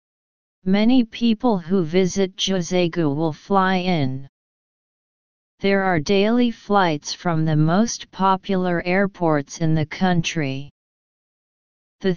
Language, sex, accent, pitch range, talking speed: English, female, American, 160-195 Hz, 105 wpm